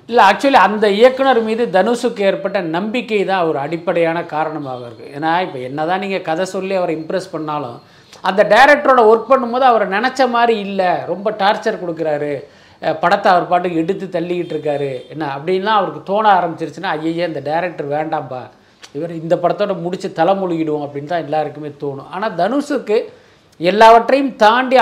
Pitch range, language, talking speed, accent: 165-220 Hz, Tamil, 145 wpm, native